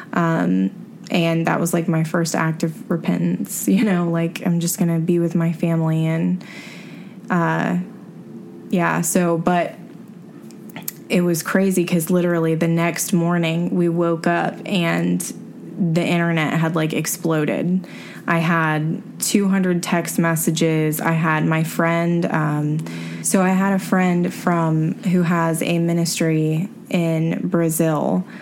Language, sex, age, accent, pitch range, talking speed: English, female, 20-39, American, 160-185 Hz, 135 wpm